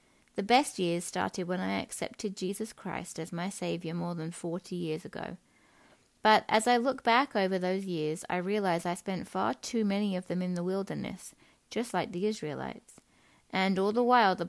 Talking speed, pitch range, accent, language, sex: 190 wpm, 175-225 Hz, British, English, female